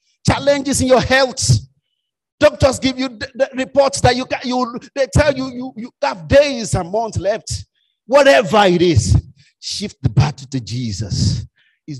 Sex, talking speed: male, 165 wpm